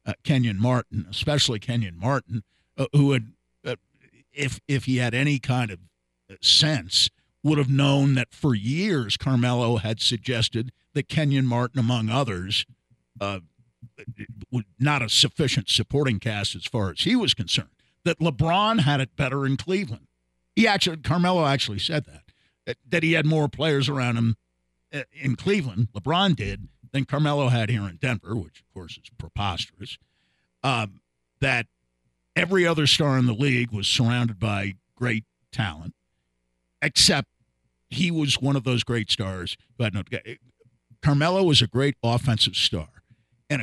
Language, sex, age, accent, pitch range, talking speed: English, male, 50-69, American, 105-140 Hz, 155 wpm